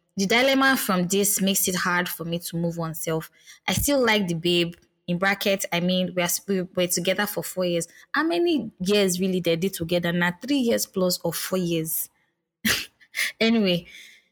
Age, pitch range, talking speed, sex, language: 20-39, 170-200 Hz, 190 wpm, female, English